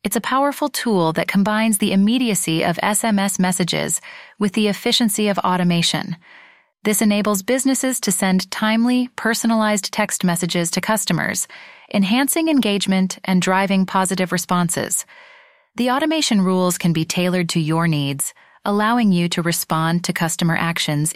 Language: English